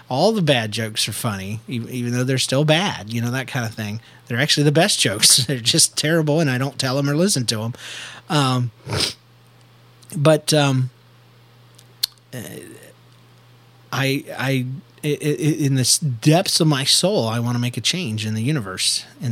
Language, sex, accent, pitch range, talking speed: English, male, American, 115-140 Hz, 170 wpm